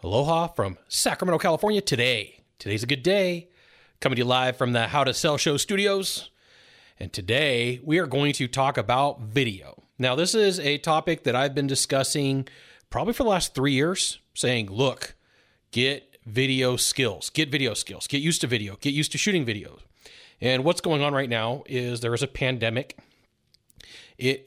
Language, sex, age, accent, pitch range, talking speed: English, male, 30-49, American, 120-145 Hz, 180 wpm